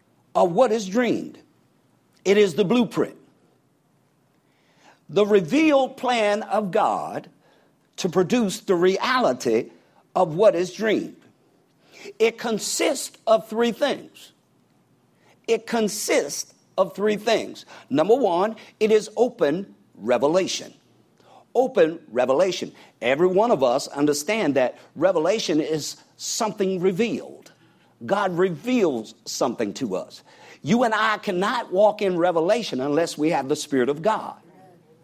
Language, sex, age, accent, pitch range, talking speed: English, male, 60-79, American, 160-225 Hz, 115 wpm